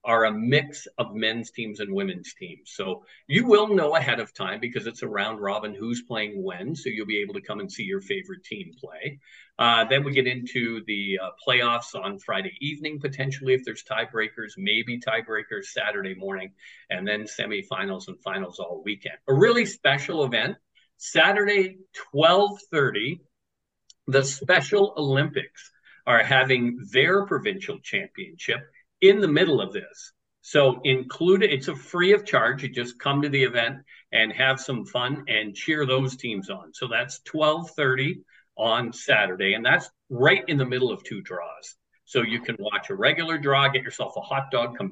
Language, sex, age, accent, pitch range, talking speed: English, male, 50-69, American, 120-175 Hz, 175 wpm